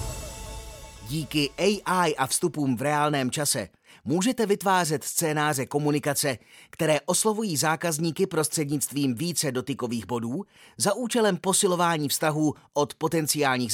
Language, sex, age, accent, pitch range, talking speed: Czech, male, 30-49, native, 140-180 Hz, 105 wpm